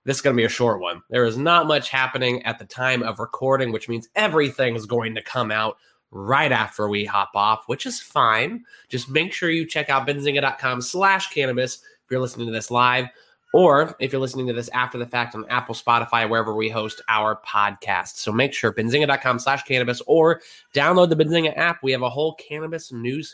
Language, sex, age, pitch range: English, male, 20-39, 120-150 Hz